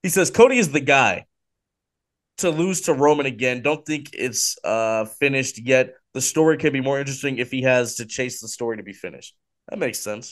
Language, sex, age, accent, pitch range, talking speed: English, male, 20-39, American, 110-135 Hz, 210 wpm